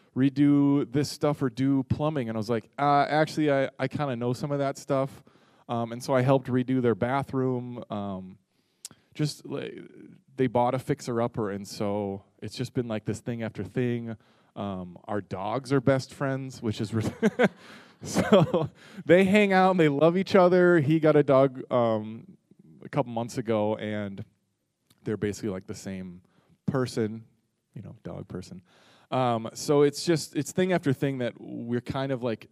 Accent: American